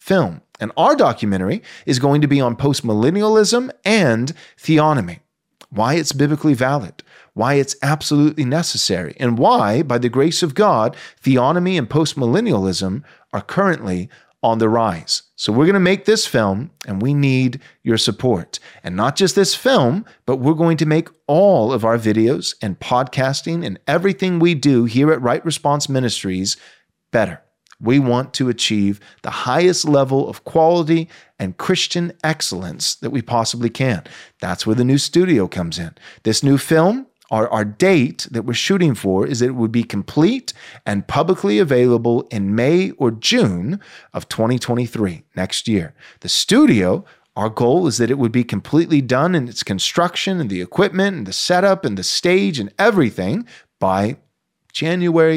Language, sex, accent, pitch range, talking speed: English, male, American, 115-165 Hz, 165 wpm